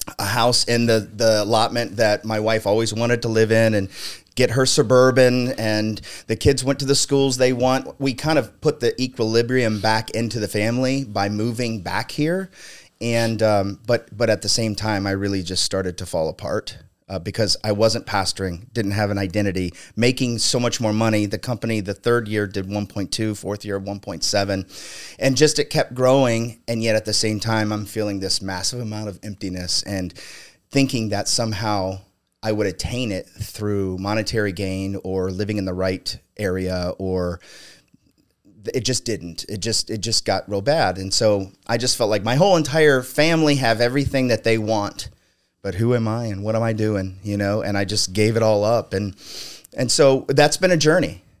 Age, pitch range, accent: 30-49, 100-120 Hz, American